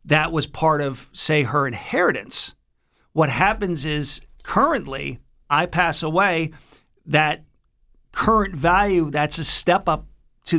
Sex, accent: male, American